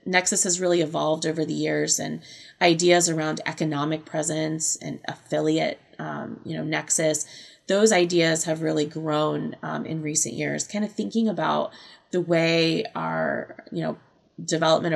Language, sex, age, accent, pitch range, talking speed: English, female, 20-39, American, 155-180 Hz, 150 wpm